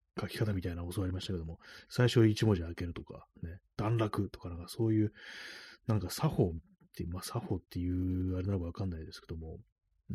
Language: Japanese